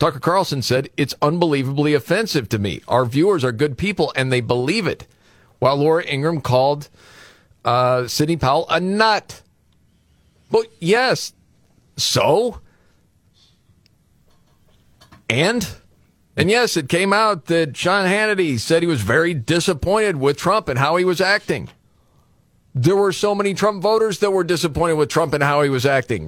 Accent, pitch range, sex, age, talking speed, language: American, 120-170 Hz, male, 50-69, 155 wpm, English